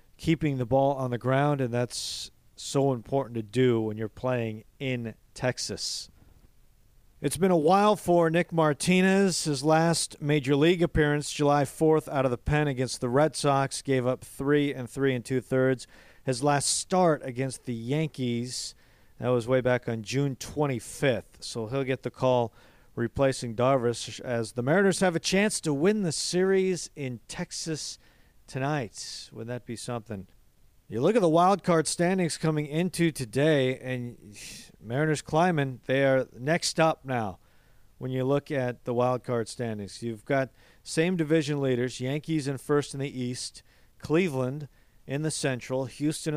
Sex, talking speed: male, 165 wpm